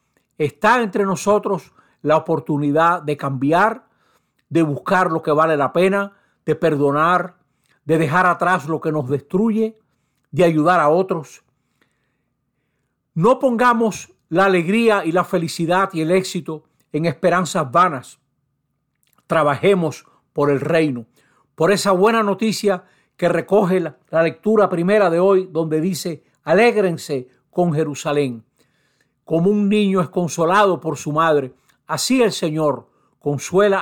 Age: 60-79